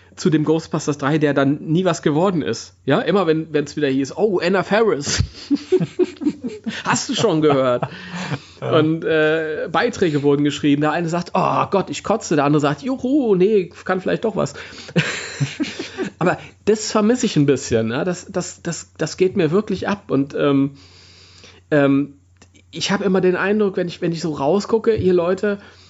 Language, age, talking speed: German, 30-49, 175 wpm